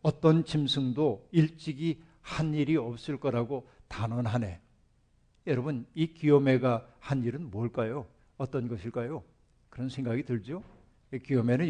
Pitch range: 115-140 Hz